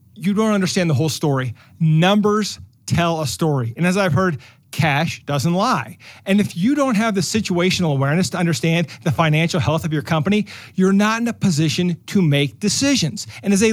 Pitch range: 150-210 Hz